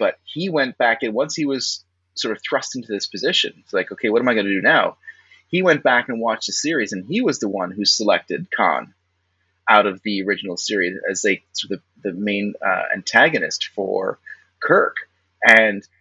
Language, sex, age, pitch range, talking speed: English, male, 30-49, 95-150 Hz, 205 wpm